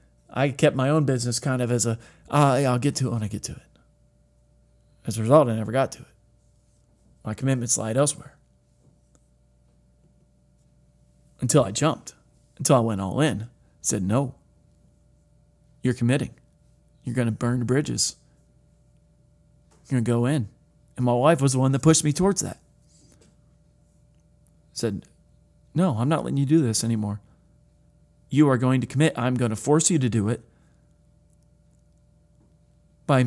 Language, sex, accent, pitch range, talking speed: English, male, American, 120-150 Hz, 165 wpm